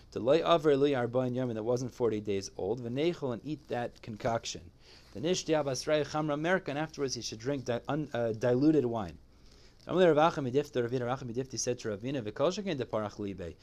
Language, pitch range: English, 115-155 Hz